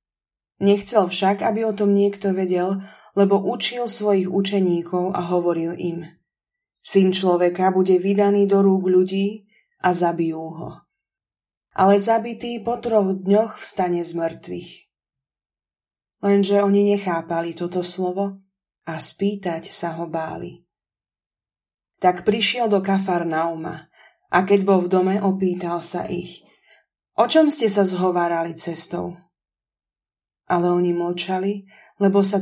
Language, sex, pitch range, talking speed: Slovak, female, 170-200 Hz, 120 wpm